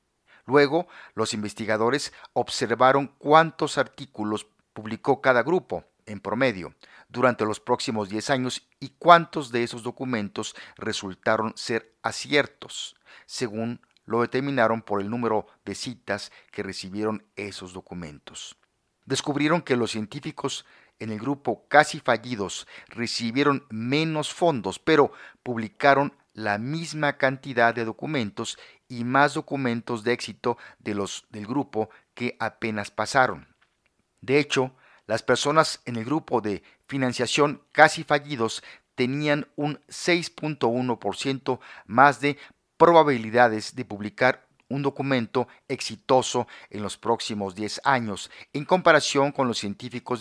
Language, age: English, 50-69